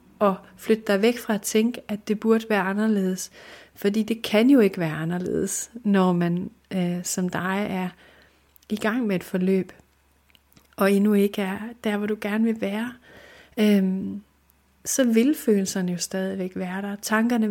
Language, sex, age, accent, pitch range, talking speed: Danish, female, 30-49, native, 190-220 Hz, 160 wpm